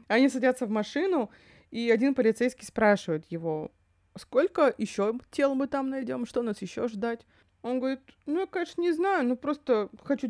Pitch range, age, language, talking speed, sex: 190-245 Hz, 20-39, Russian, 170 wpm, female